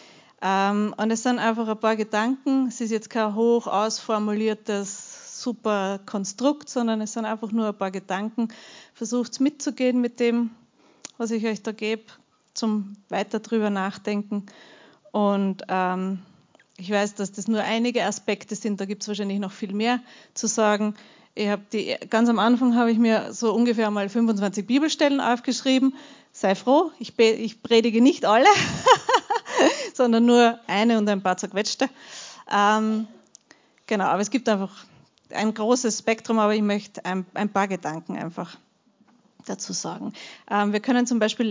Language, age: German, 30-49